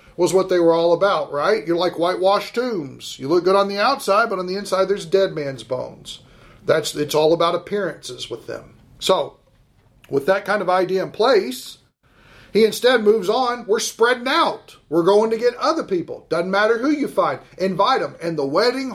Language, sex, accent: English, male, American